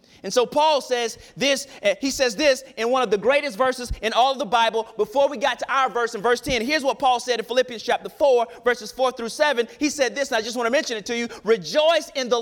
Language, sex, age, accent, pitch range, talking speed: English, male, 30-49, American, 250-310 Hz, 260 wpm